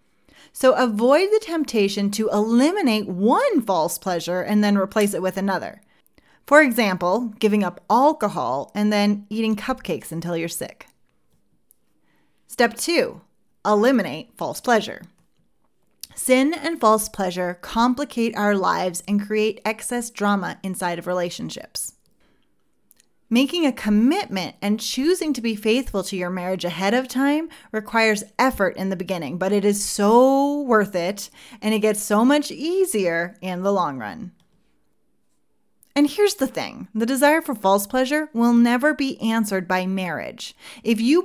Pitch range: 200-265 Hz